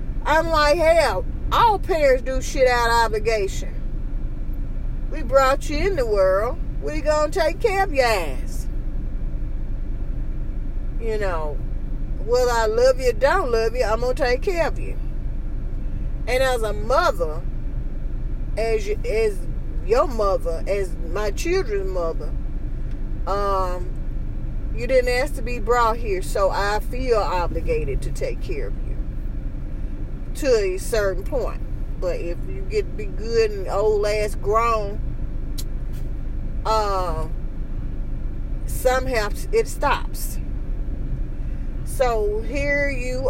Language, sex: English, female